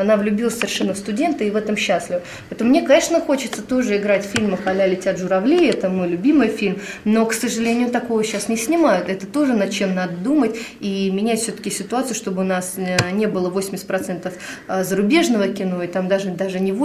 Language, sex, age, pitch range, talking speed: Russian, female, 20-39, 190-230 Hz, 195 wpm